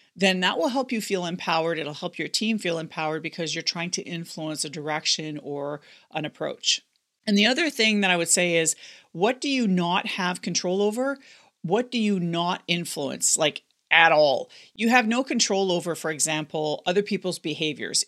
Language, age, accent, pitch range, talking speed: English, 40-59, American, 170-220 Hz, 190 wpm